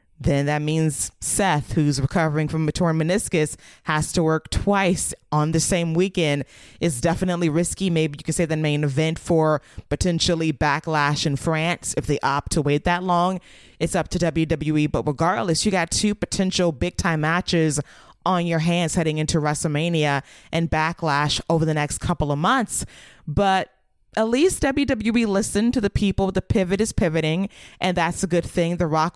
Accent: American